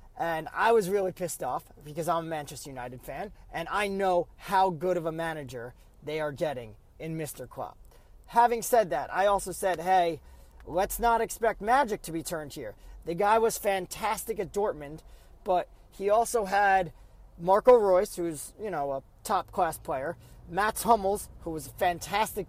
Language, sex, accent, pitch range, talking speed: English, male, American, 165-220 Hz, 175 wpm